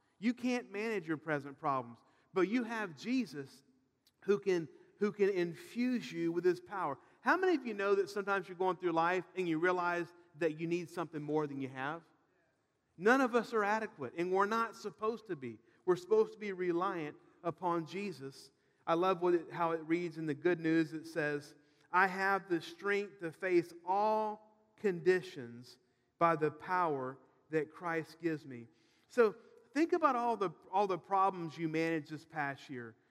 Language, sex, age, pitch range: English, male, 40-59, 170-215 Hz